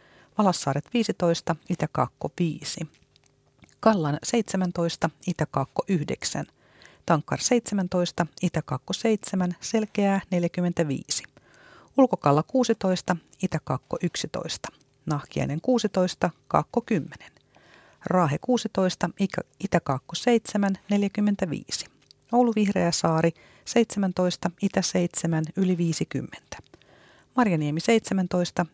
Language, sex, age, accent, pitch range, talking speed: Finnish, female, 40-59, native, 160-205 Hz, 75 wpm